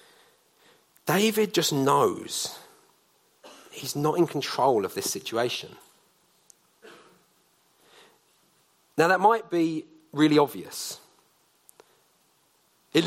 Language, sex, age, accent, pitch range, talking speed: English, male, 40-59, British, 145-245 Hz, 80 wpm